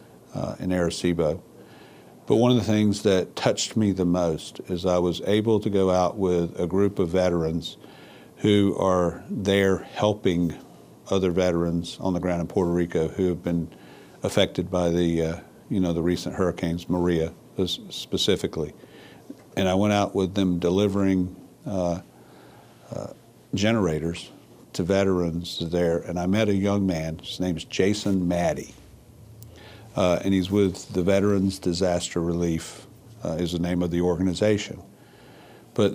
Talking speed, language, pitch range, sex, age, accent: 150 wpm, English, 85-100 Hz, male, 50-69, American